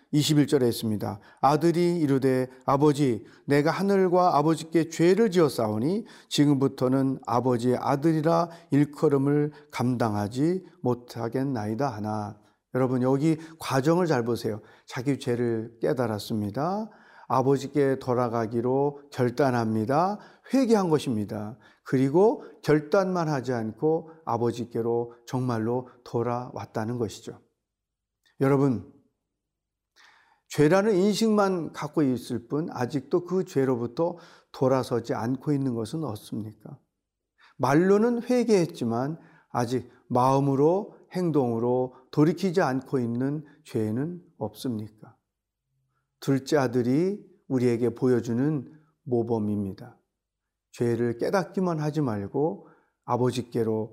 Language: Korean